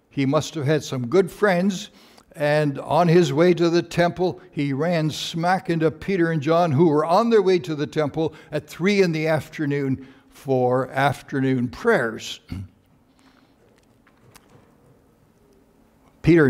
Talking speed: 140 wpm